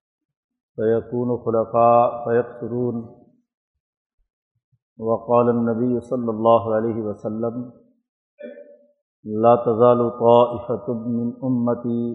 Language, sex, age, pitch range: Urdu, male, 50-69, 115-125 Hz